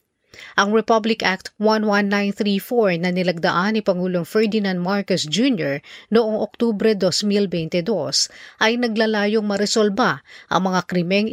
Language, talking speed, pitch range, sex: Filipino, 105 wpm, 185-230 Hz, female